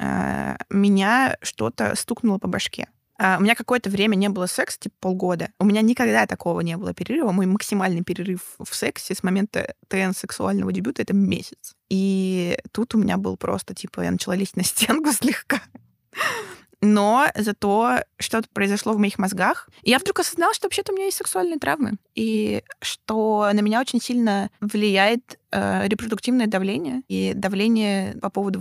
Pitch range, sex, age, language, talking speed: 195-225 Hz, female, 20-39, Russian, 160 wpm